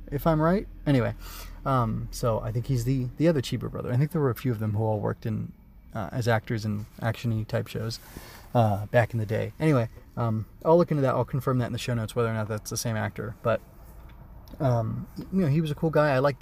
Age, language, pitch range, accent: 30-49, English, 110-135 Hz, American